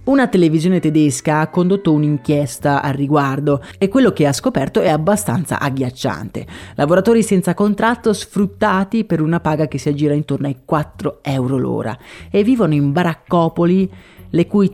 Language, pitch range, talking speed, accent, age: Italian, 145-185 Hz, 150 wpm, native, 30-49